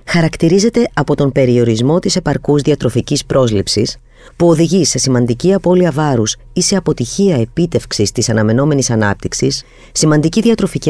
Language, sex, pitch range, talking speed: Greek, female, 120-175 Hz, 125 wpm